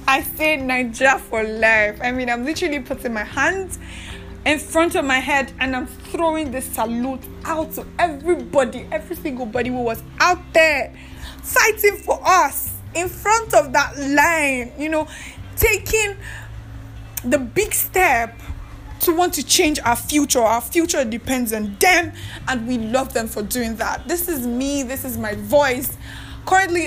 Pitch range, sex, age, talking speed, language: 235-325 Hz, female, 10-29, 160 wpm, English